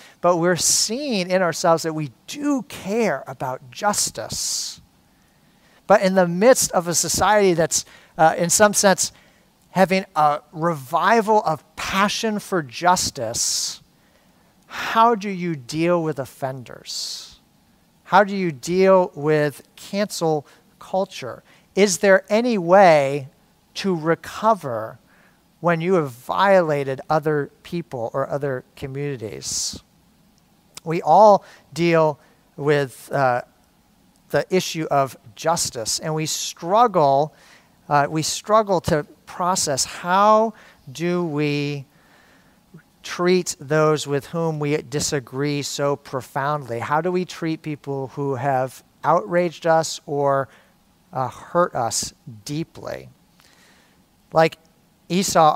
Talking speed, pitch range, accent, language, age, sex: 110 wpm, 145-190 Hz, American, English, 50-69, male